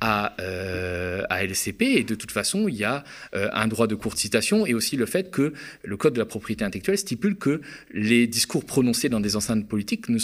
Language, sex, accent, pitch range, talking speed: French, male, French, 105-135 Hz, 215 wpm